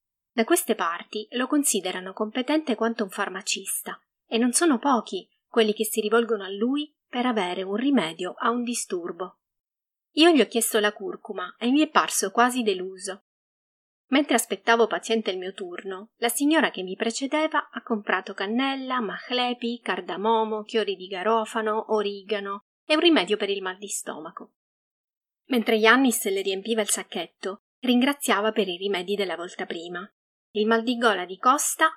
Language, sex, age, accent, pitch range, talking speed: Italian, female, 30-49, native, 195-245 Hz, 160 wpm